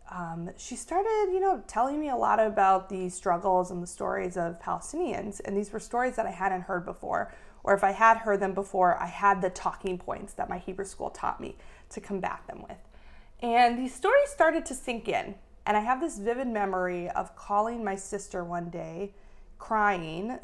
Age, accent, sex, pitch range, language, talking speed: 30-49, American, female, 180-220 Hz, English, 200 wpm